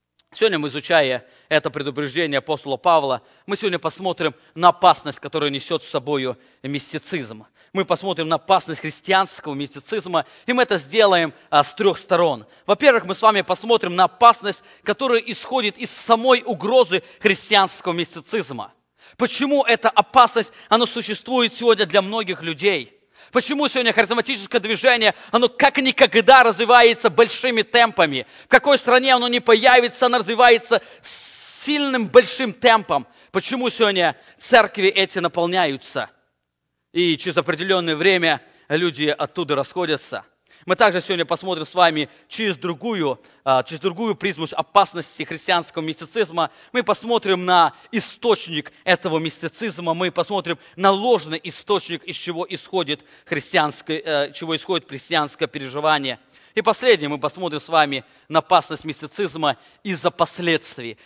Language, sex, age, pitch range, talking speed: English, male, 20-39, 155-225 Hz, 125 wpm